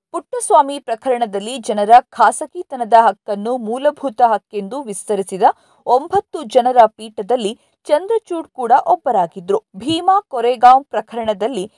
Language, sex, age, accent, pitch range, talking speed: Kannada, female, 50-69, native, 220-305 Hz, 85 wpm